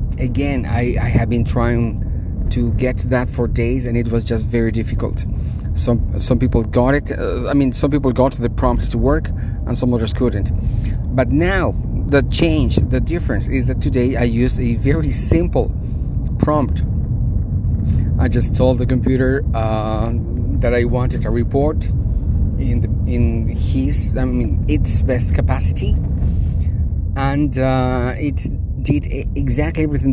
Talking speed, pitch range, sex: 155 wpm, 100-125 Hz, male